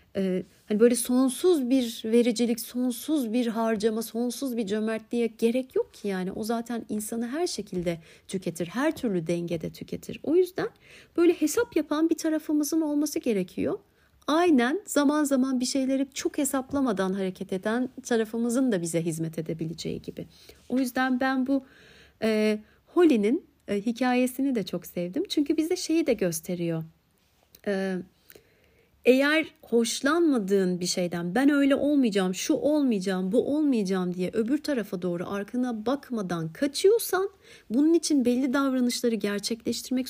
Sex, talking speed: female, 135 wpm